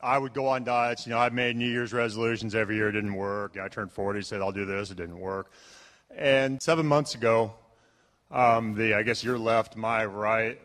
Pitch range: 105-120 Hz